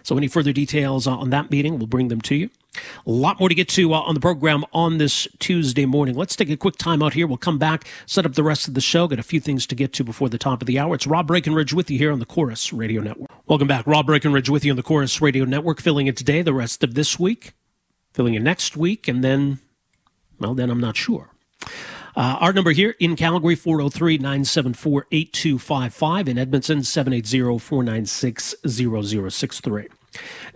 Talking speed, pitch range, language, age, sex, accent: 210 wpm, 130-160 Hz, English, 40-59, male, American